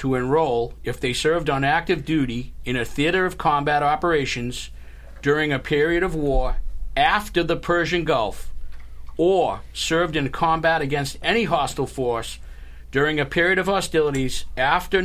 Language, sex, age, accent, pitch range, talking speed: English, male, 40-59, American, 120-175 Hz, 150 wpm